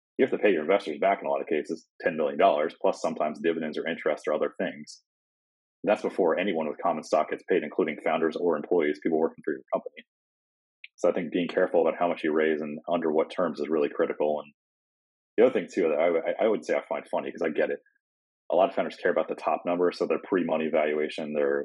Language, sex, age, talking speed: English, male, 30-49, 245 wpm